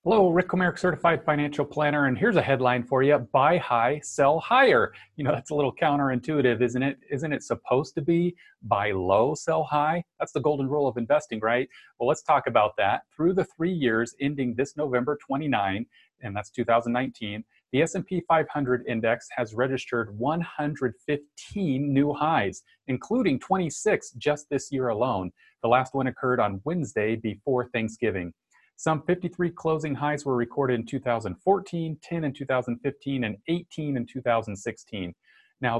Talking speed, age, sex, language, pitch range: 160 wpm, 40-59, male, English, 120-155 Hz